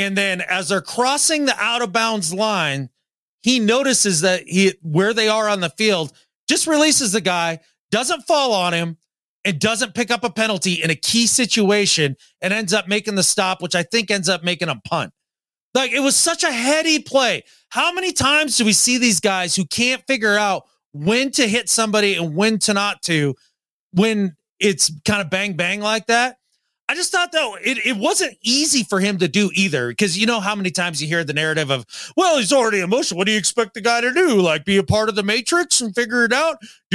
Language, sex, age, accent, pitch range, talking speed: English, male, 30-49, American, 185-260 Hz, 215 wpm